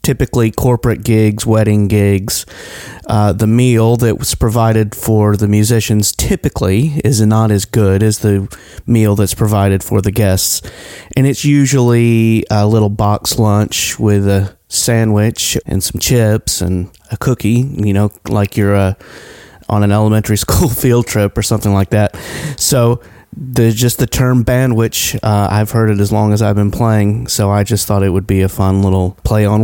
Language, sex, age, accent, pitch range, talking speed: English, male, 30-49, American, 100-115 Hz, 175 wpm